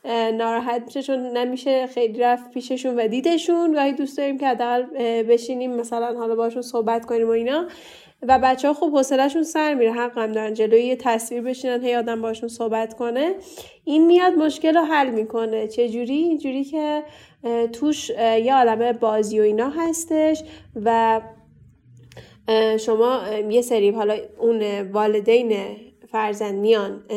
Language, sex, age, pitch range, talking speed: Persian, female, 10-29, 225-270 Hz, 145 wpm